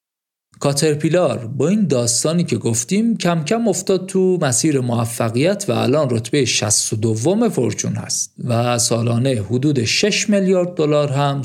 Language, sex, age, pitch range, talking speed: Persian, male, 50-69, 115-160 Hz, 130 wpm